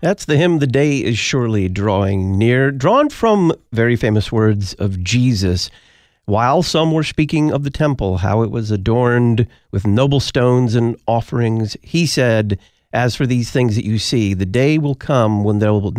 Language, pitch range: English, 100-130 Hz